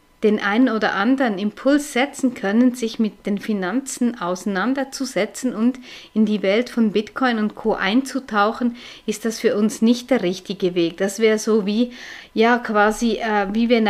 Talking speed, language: 165 wpm, German